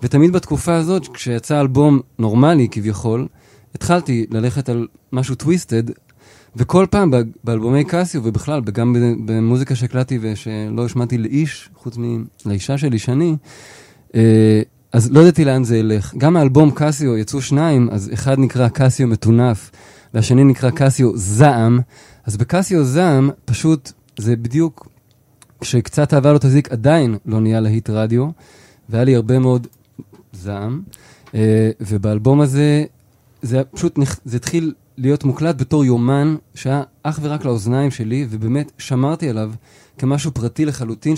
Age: 20-39